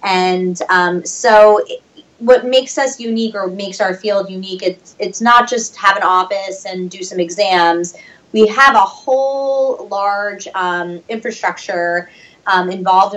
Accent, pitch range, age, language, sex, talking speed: American, 170-190 Hz, 20-39, English, female, 145 wpm